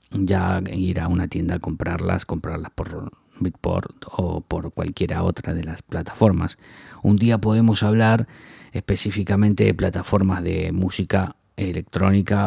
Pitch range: 90-110 Hz